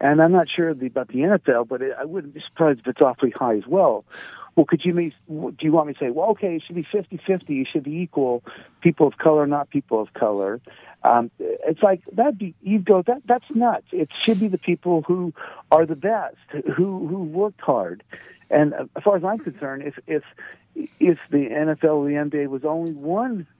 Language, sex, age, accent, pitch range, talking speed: English, male, 60-79, American, 140-190 Hz, 215 wpm